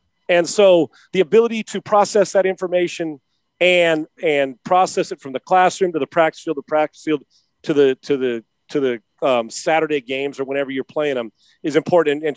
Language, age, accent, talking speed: English, 40-59, American, 190 wpm